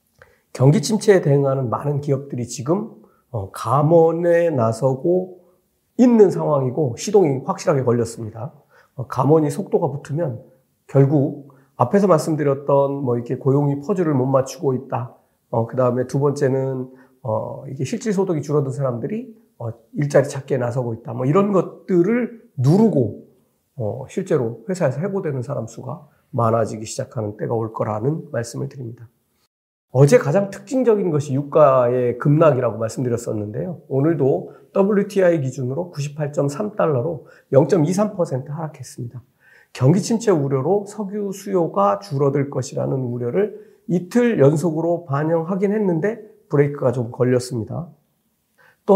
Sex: male